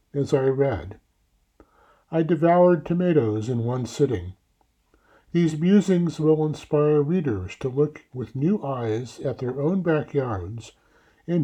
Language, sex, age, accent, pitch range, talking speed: English, male, 60-79, American, 125-160 Hz, 125 wpm